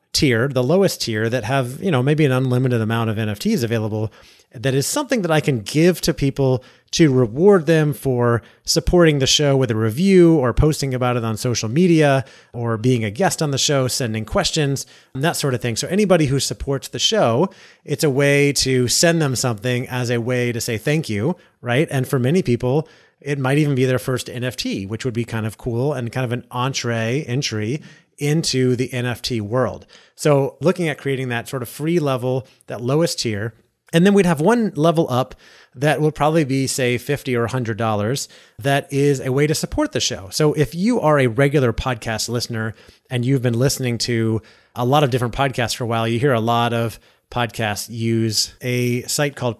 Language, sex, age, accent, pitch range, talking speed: English, male, 30-49, American, 120-145 Hz, 205 wpm